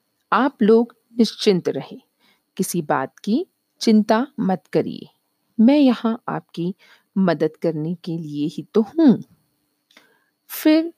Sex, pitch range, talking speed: female, 165-220 Hz, 115 wpm